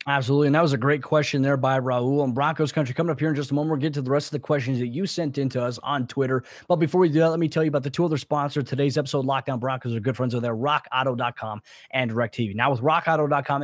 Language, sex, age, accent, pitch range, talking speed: English, male, 20-39, American, 140-175 Hz, 290 wpm